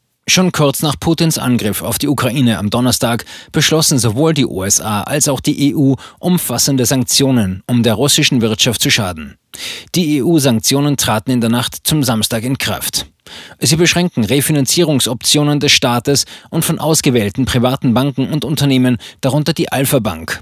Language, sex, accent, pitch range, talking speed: German, male, German, 120-155 Hz, 155 wpm